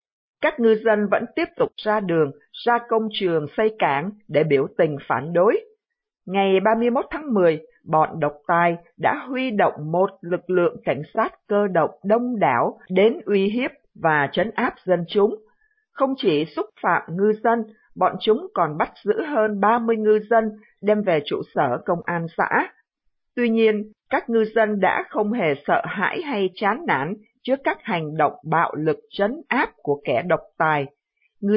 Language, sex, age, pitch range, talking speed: Vietnamese, female, 50-69, 175-230 Hz, 175 wpm